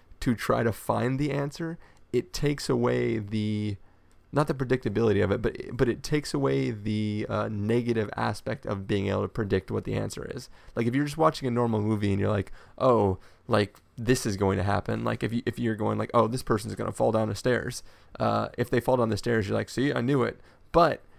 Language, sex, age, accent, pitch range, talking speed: English, male, 30-49, American, 105-125 Hz, 225 wpm